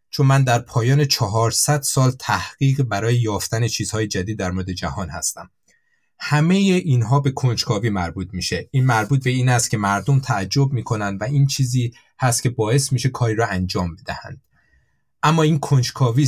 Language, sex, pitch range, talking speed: Persian, male, 115-155 Hz, 160 wpm